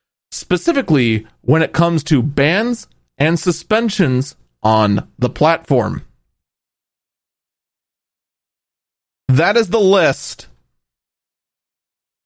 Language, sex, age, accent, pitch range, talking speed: English, male, 30-49, American, 115-170 Hz, 75 wpm